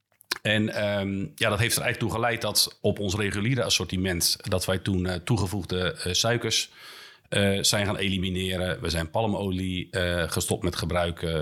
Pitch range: 90-110 Hz